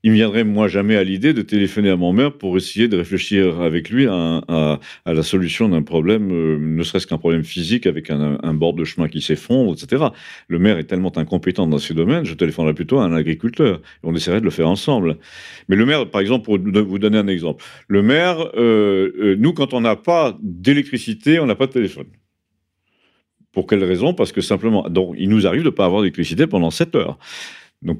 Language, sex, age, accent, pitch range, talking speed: French, male, 50-69, French, 90-145 Hz, 225 wpm